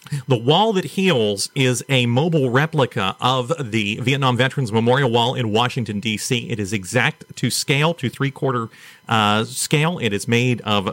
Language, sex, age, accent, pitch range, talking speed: English, male, 40-59, American, 110-140 Hz, 165 wpm